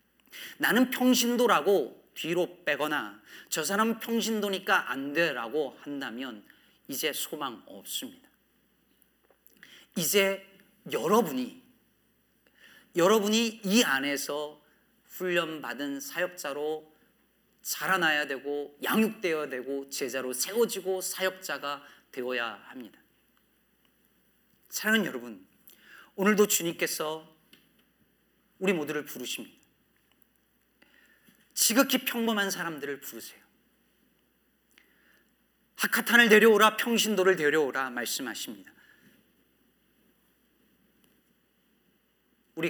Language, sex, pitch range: Korean, male, 150-220 Hz